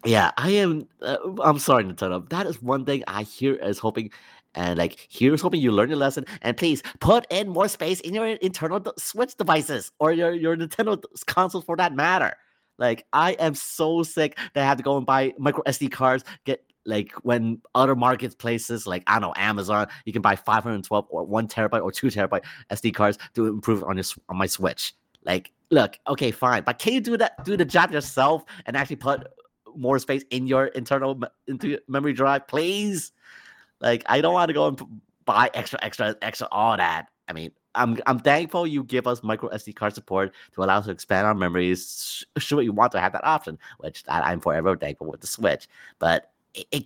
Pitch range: 105-160 Hz